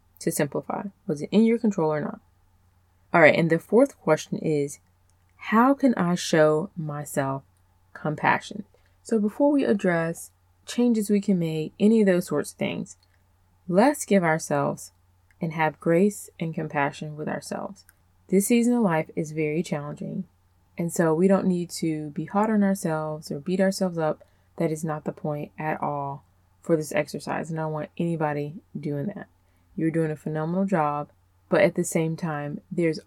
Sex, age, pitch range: female, 20-39, 145-190 Hz